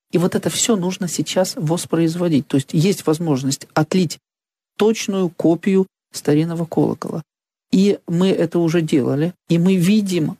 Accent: native